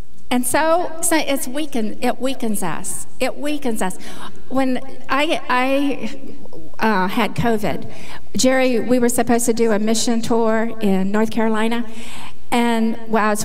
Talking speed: 130 wpm